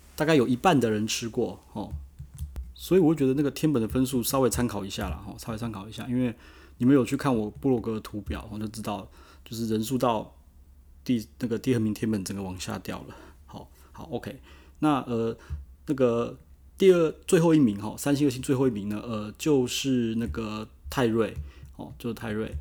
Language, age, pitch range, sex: Chinese, 30-49, 100-125 Hz, male